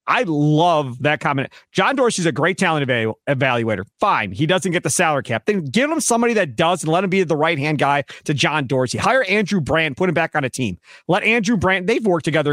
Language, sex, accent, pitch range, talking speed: English, male, American, 160-235 Hz, 230 wpm